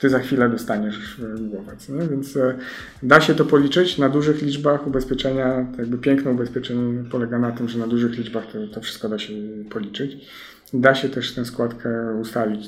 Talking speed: 170 wpm